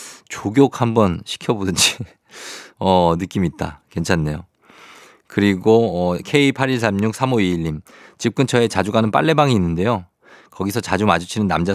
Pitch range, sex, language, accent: 95-120 Hz, male, Korean, native